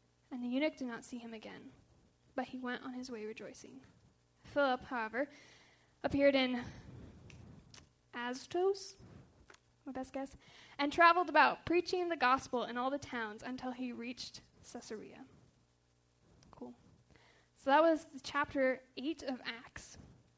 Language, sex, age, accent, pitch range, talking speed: English, female, 10-29, American, 235-280 Hz, 135 wpm